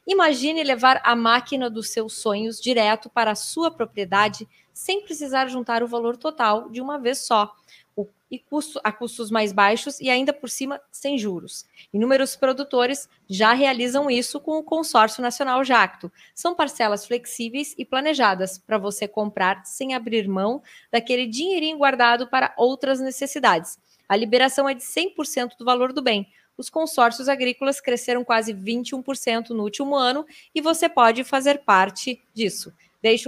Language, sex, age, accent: Portuguese, female, 20-39, Brazilian